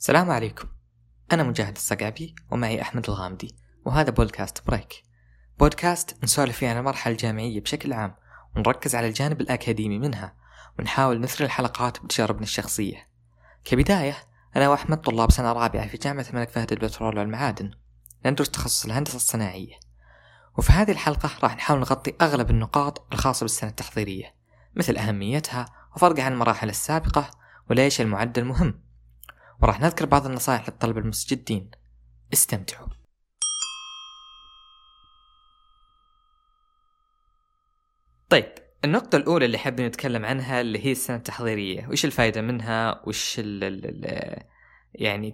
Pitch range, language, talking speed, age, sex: 110-145 Hz, Arabic, 120 wpm, 20-39, female